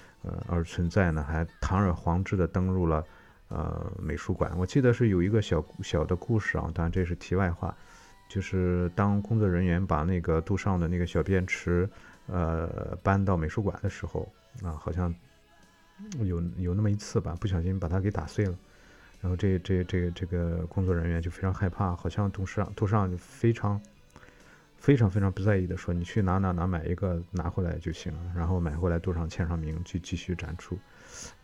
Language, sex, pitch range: Chinese, male, 85-100 Hz